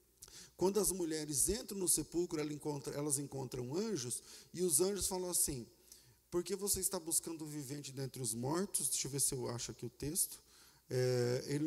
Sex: male